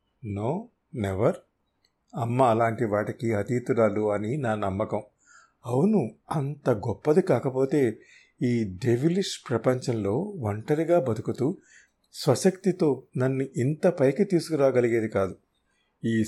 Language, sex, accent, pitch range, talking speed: Telugu, male, native, 115-150 Hz, 90 wpm